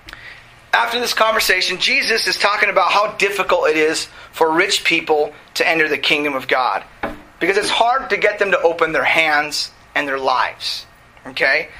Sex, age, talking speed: male, 30-49, 175 wpm